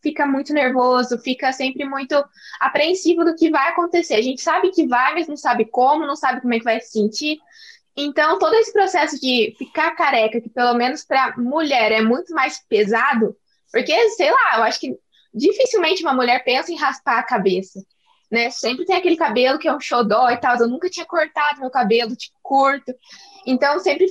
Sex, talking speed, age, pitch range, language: female, 195 wpm, 20-39, 245-340 Hz, Portuguese